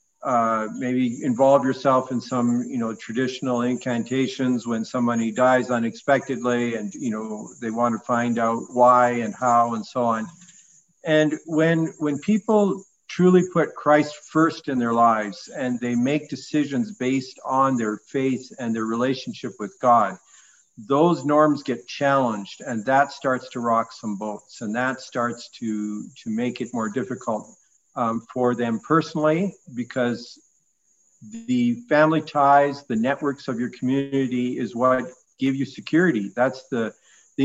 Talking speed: 150 wpm